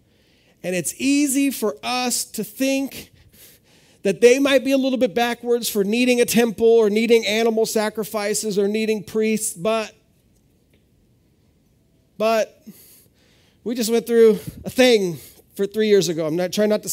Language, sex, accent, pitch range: English, male, American, 160-230 Hz